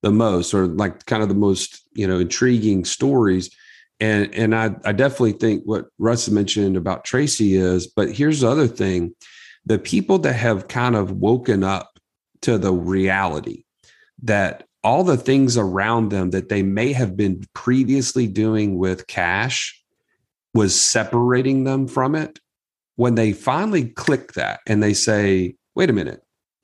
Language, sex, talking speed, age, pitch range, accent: English, male, 160 wpm, 40-59, 100-125 Hz, American